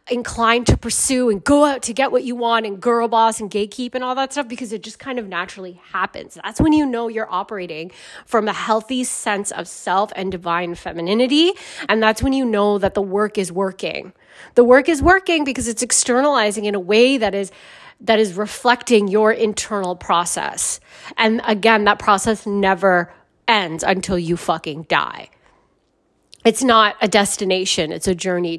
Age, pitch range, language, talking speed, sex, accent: 30-49, 195-255 Hz, English, 185 wpm, female, American